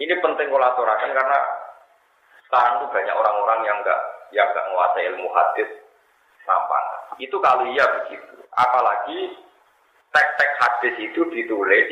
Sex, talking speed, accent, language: male, 120 wpm, native, Indonesian